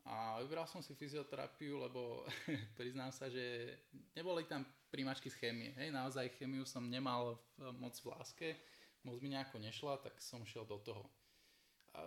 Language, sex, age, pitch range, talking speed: Slovak, male, 20-39, 120-140 Hz, 160 wpm